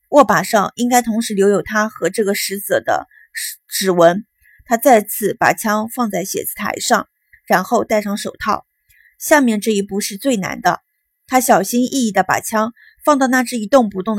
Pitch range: 200-255 Hz